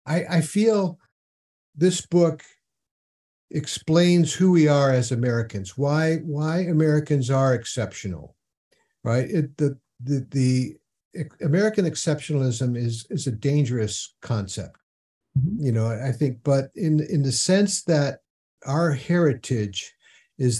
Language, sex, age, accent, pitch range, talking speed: English, male, 60-79, American, 120-150 Hz, 120 wpm